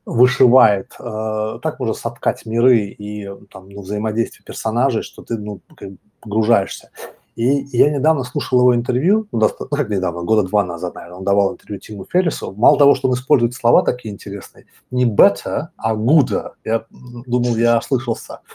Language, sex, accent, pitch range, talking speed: Russian, male, native, 105-140 Hz, 170 wpm